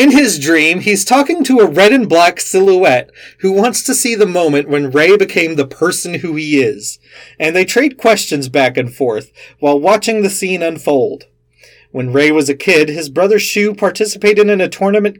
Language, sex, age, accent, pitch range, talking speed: English, male, 30-49, American, 135-190 Hz, 195 wpm